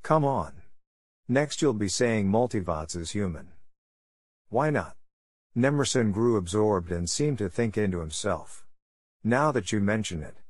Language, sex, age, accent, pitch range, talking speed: English, male, 50-69, American, 90-120 Hz, 145 wpm